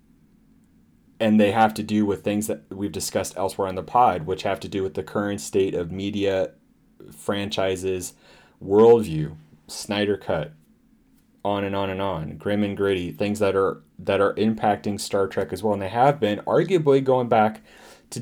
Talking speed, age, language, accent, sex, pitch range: 180 wpm, 30-49, English, American, male, 90-110 Hz